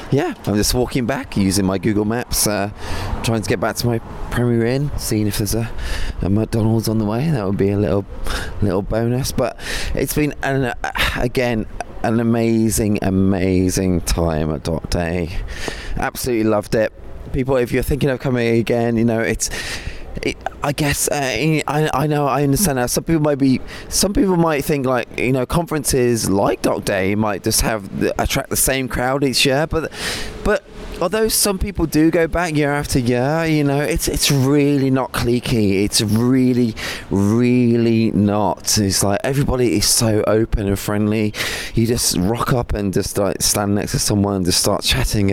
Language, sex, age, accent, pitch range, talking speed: English, male, 20-39, British, 100-130 Hz, 185 wpm